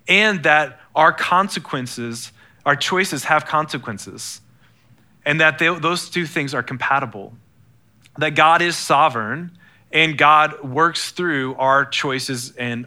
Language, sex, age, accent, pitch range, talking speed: English, male, 30-49, American, 120-150 Hz, 125 wpm